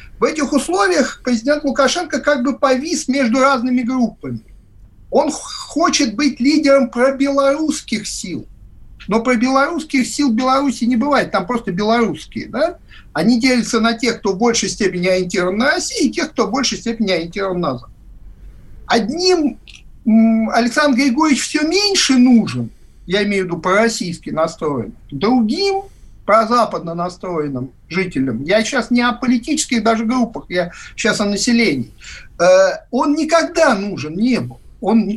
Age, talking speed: 50-69, 135 wpm